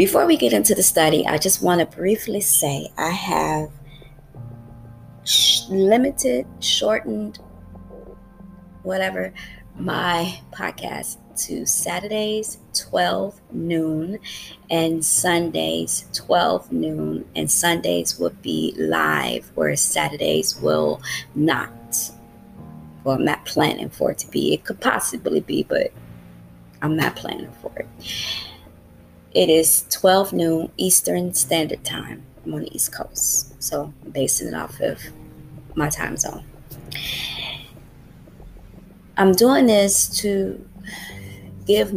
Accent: American